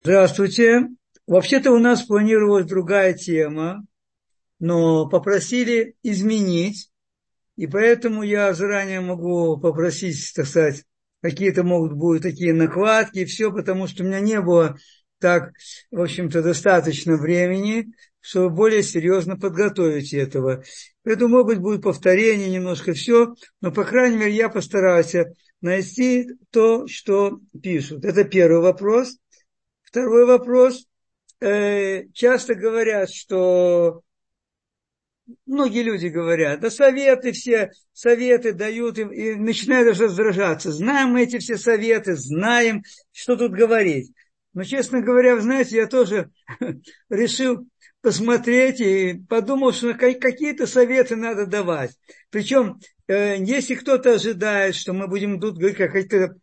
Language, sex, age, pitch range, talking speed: Russian, male, 50-69, 180-235 Hz, 120 wpm